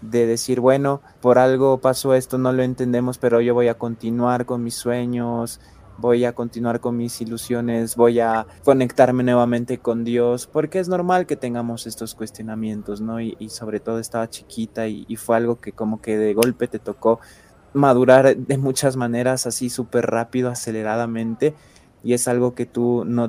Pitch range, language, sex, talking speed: 115-130 Hz, Spanish, male, 180 wpm